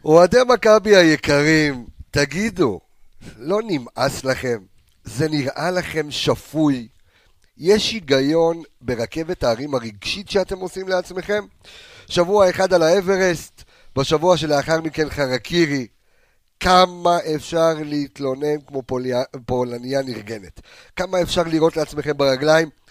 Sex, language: male, Hebrew